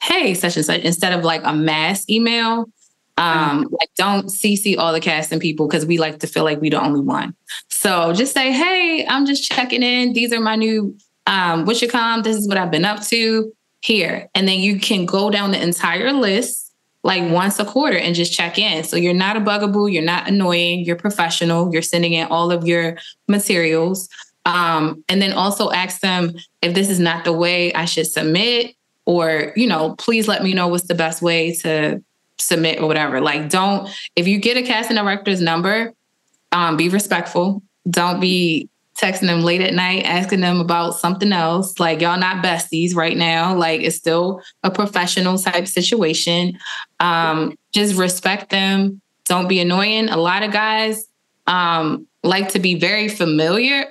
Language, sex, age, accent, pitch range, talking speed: English, female, 20-39, American, 170-215 Hz, 185 wpm